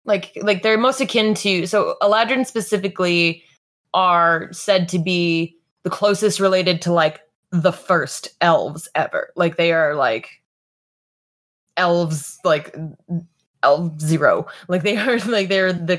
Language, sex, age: English, female, 20-39